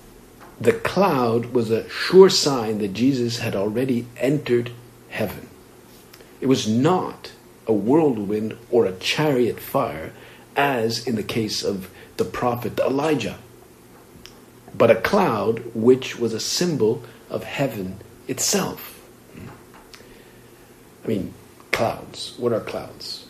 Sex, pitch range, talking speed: male, 100-125 Hz, 115 wpm